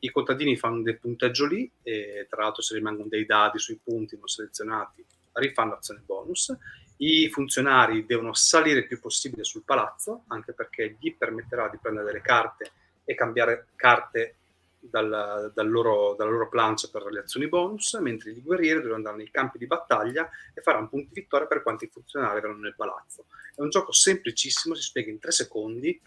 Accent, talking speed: native, 185 wpm